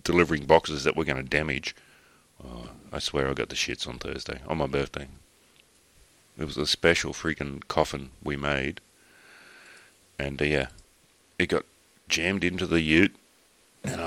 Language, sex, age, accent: English, male, 40-59, Australian